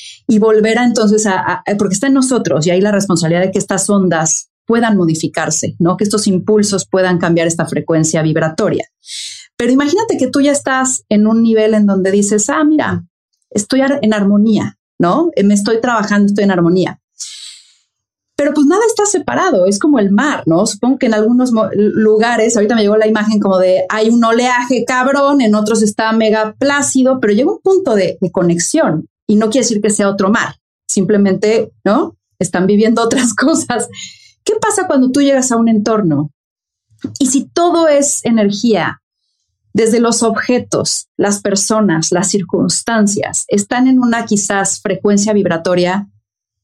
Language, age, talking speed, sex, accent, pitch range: Spanish, 30-49, 170 wpm, female, Mexican, 185-240 Hz